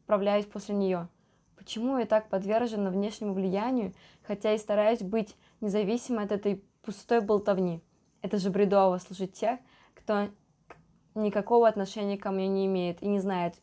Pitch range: 190-235 Hz